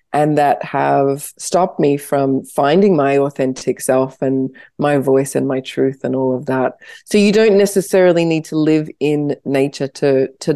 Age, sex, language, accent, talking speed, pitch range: 20-39, female, English, Australian, 175 wpm, 140-175 Hz